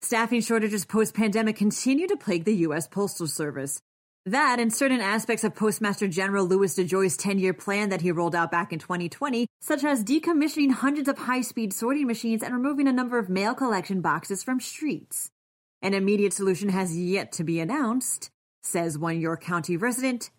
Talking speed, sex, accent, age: 175 wpm, female, American, 30-49